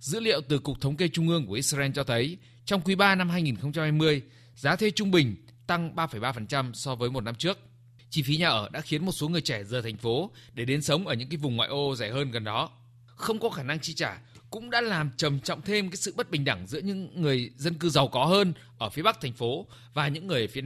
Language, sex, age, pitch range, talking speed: Vietnamese, male, 20-39, 120-175 Hz, 260 wpm